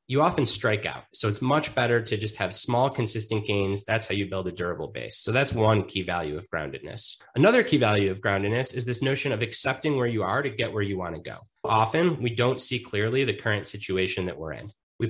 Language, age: English, 30-49